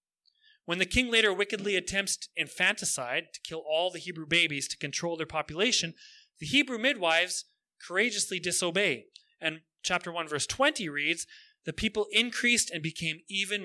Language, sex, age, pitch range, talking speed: English, male, 30-49, 155-215 Hz, 150 wpm